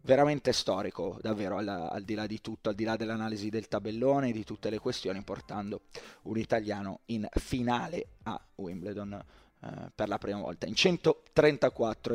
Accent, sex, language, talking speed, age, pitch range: native, male, Italian, 160 wpm, 20-39, 110-140 Hz